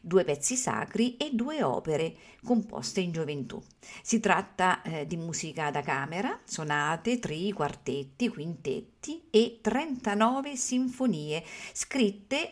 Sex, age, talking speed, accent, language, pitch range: female, 50-69, 115 wpm, native, Italian, 155-220 Hz